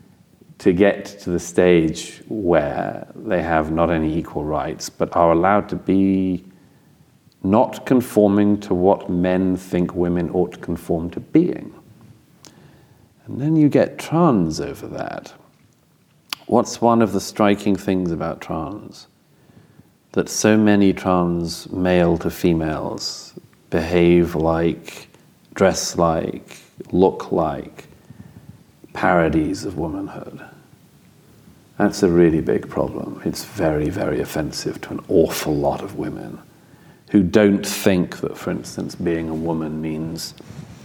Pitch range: 85-105 Hz